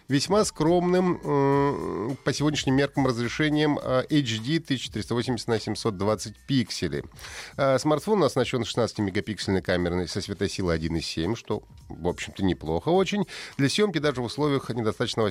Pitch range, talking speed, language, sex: 100-140 Hz, 115 wpm, Russian, male